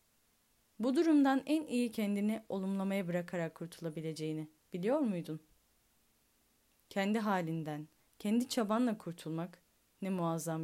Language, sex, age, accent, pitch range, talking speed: Turkish, female, 10-29, native, 160-220 Hz, 95 wpm